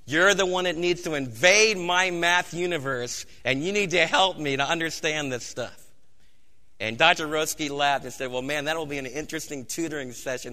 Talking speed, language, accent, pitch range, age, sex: 200 wpm, English, American, 135-180 Hz, 50-69, male